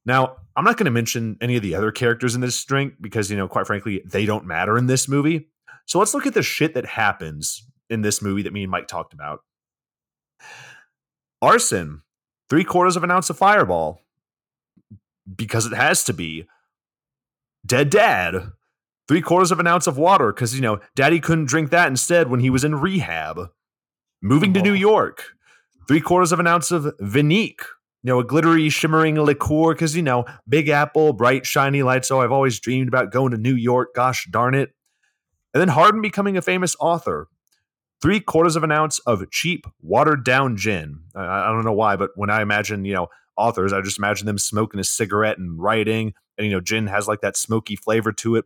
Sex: male